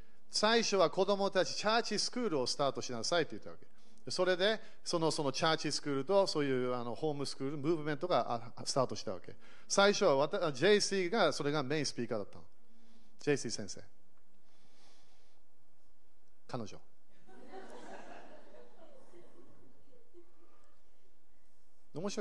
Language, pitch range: Japanese, 135-195 Hz